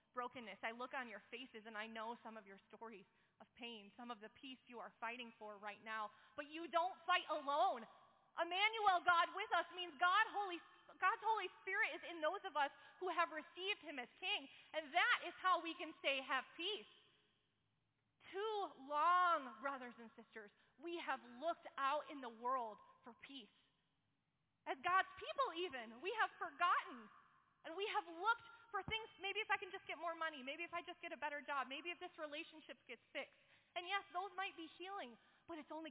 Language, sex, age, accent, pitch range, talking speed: English, female, 20-39, American, 230-345 Hz, 195 wpm